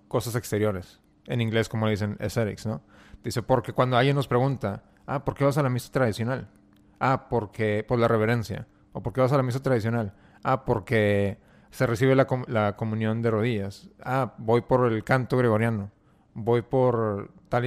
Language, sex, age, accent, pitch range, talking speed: English, male, 30-49, Mexican, 110-130 Hz, 180 wpm